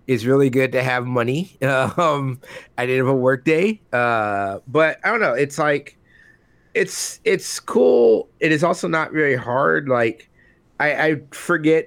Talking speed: 165 wpm